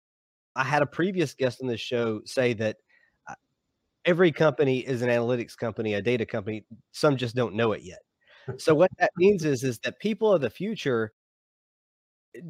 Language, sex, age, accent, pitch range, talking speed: English, male, 30-49, American, 115-150 Hz, 180 wpm